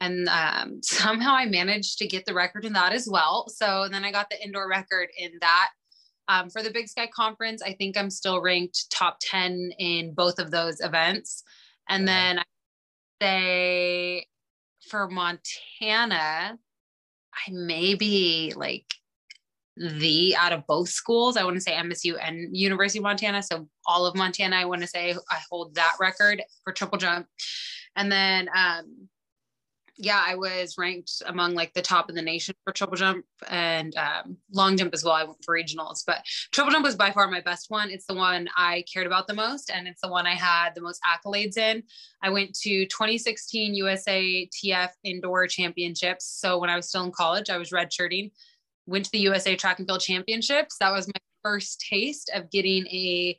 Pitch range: 175-205 Hz